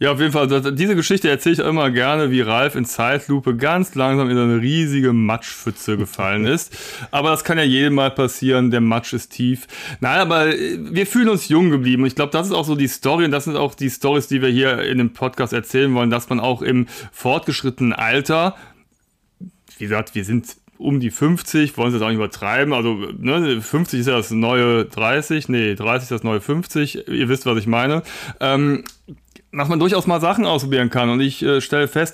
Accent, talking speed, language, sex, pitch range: German, 215 wpm, German, male, 120-145 Hz